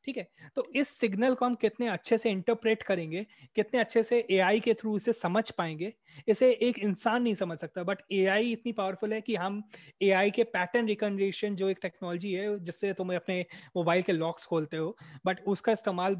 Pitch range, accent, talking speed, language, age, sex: 175-220 Hz, native, 195 wpm, Hindi, 20-39, male